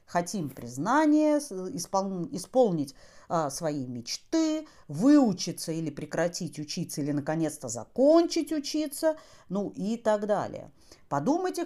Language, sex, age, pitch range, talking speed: Russian, female, 40-59, 175-260 Hz, 100 wpm